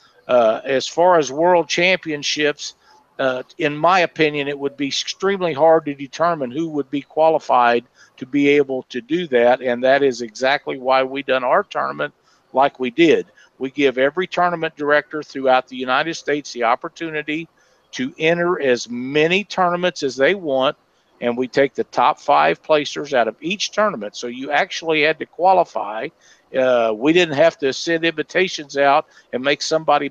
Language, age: English, 50-69